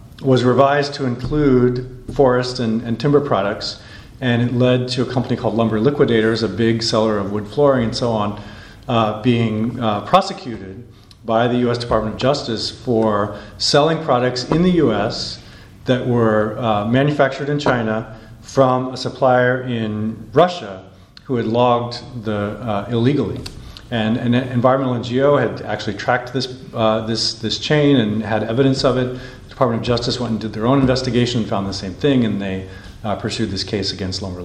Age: 40-59